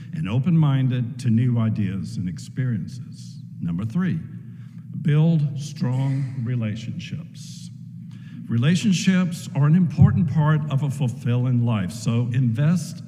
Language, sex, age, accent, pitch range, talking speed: English, male, 60-79, American, 120-155 Hz, 105 wpm